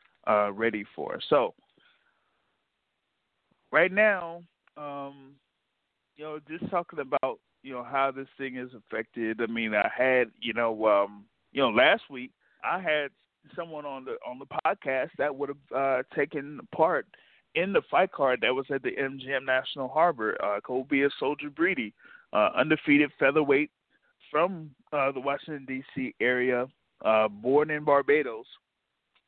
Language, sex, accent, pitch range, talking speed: English, male, American, 125-150 Hz, 155 wpm